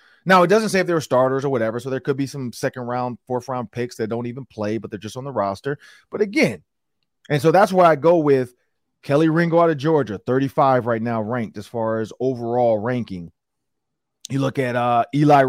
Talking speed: 215 wpm